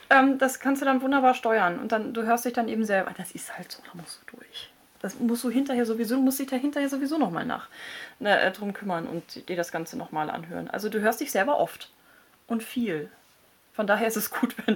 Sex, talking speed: female, 240 wpm